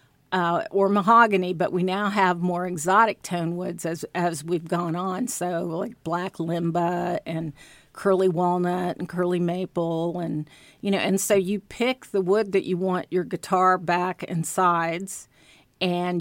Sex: female